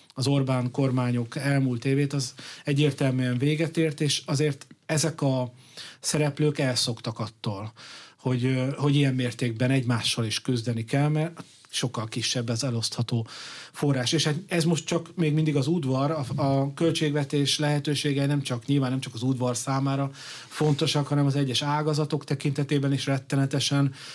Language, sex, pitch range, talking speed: Hungarian, male, 125-145 Hz, 145 wpm